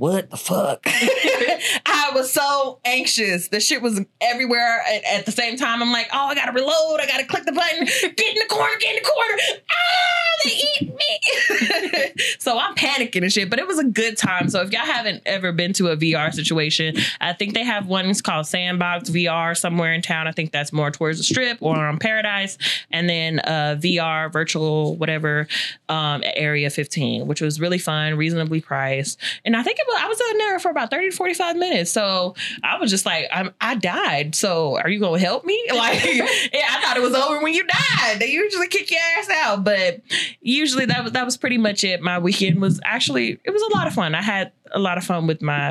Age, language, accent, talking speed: 20-39, English, American, 220 wpm